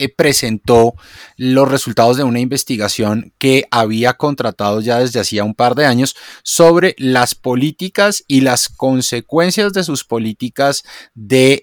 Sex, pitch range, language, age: male, 120-150 Hz, Spanish, 30-49